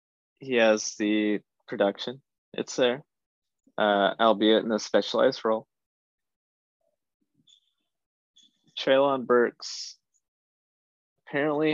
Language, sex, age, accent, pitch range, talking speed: English, male, 20-39, American, 100-125 Hz, 75 wpm